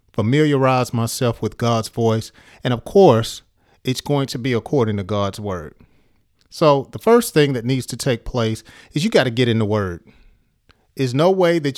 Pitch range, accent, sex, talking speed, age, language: 115-150 Hz, American, male, 190 wpm, 40-59, English